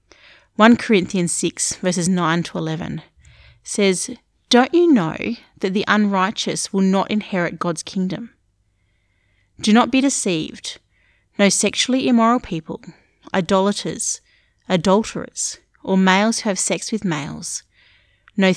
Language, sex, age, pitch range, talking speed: English, female, 30-49, 155-210 Hz, 120 wpm